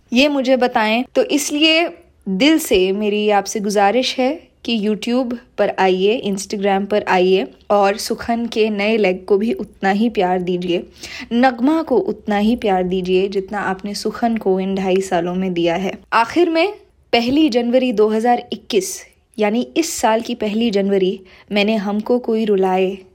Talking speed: 155 wpm